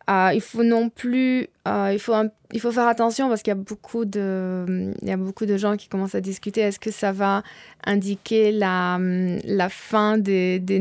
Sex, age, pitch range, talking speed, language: female, 20-39, 210-245 Hz, 215 wpm, French